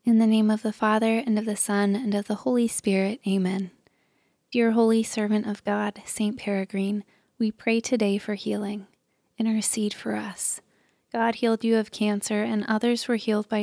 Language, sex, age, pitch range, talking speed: English, female, 20-39, 205-230 Hz, 180 wpm